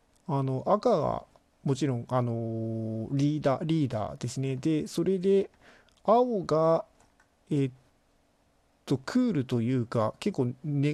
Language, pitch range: Japanese, 120-160 Hz